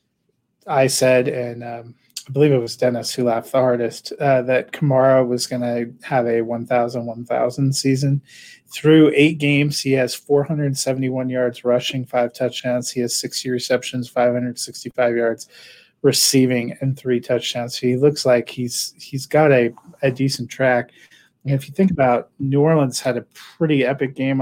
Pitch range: 120-135 Hz